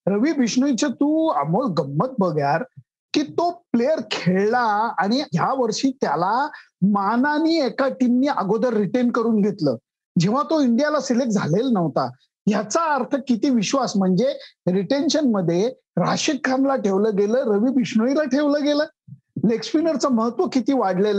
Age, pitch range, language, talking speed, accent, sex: 50-69, 195-260 Hz, Marathi, 130 wpm, native, male